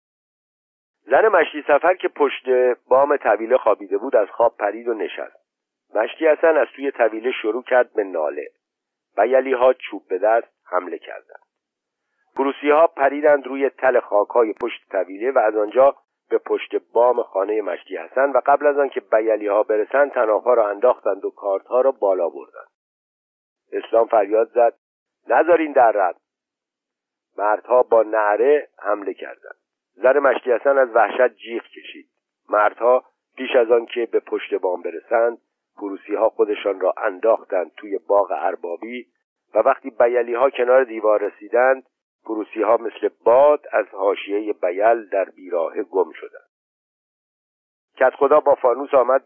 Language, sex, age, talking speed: Persian, male, 50-69, 145 wpm